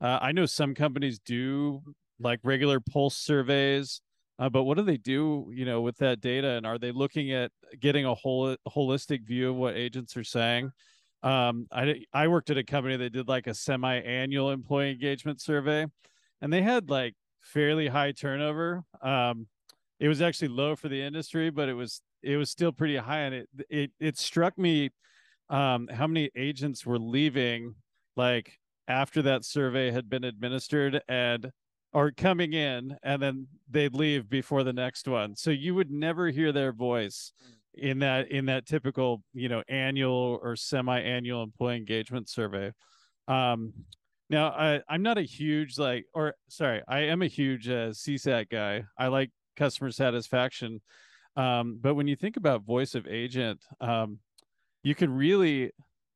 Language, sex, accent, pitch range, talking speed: English, male, American, 125-145 Hz, 170 wpm